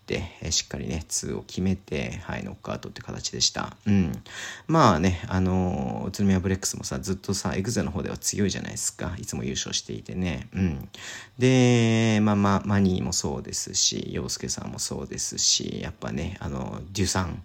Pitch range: 85-105 Hz